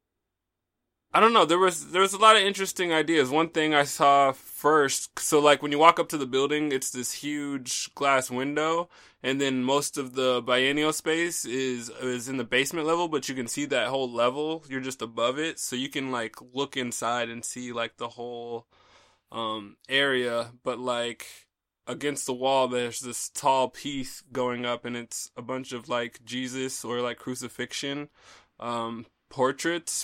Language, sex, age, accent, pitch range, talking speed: English, male, 20-39, American, 120-145 Hz, 180 wpm